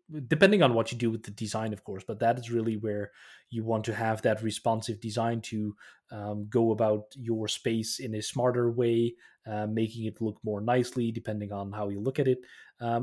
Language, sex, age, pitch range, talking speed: English, male, 20-39, 105-125 Hz, 210 wpm